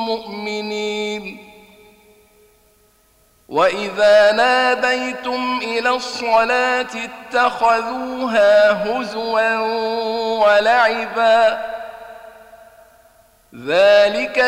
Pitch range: 210-235 Hz